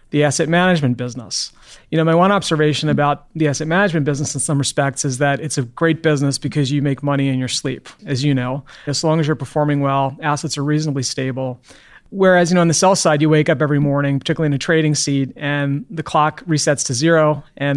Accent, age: American, 30-49